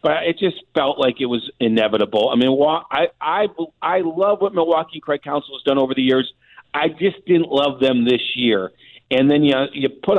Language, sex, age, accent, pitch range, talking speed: English, male, 40-59, American, 130-155 Hz, 205 wpm